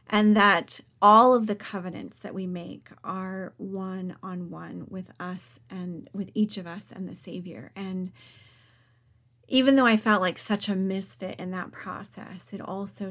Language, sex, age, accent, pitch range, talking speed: English, female, 30-49, American, 165-210 Hz, 170 wpm